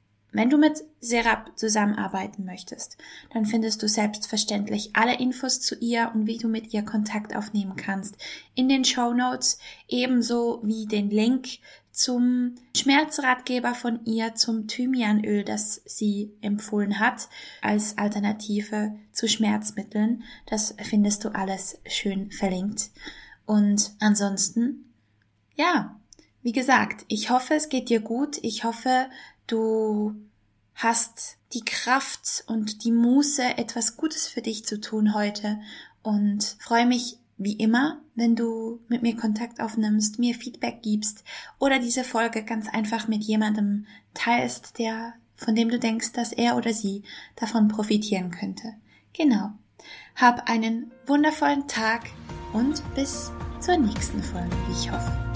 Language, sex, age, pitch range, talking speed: German, female, 10-29, 210-245 Hz, 135 wpm